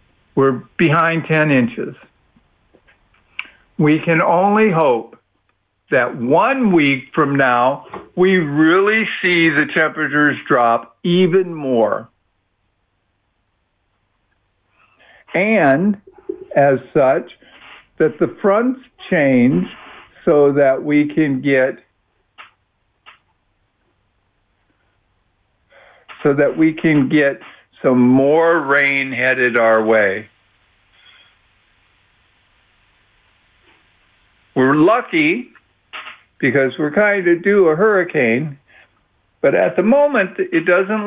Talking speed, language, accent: 85 wpm, English, American